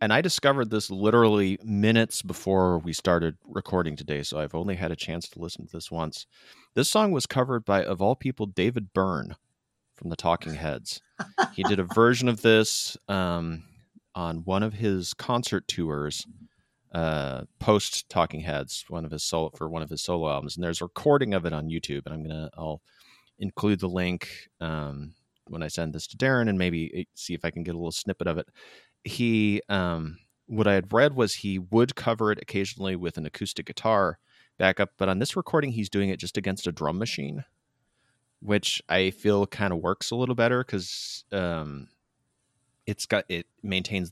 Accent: American